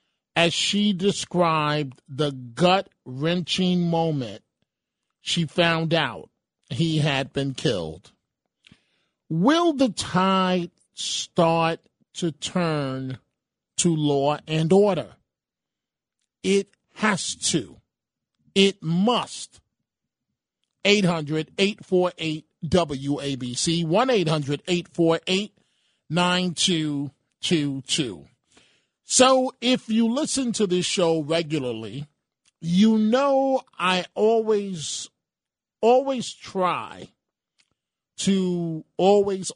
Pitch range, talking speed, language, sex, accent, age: 145-190 Hz, 70 wpm, English, male, American, 40-59